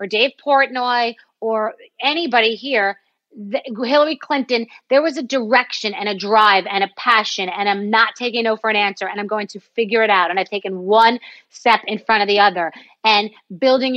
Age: 30-49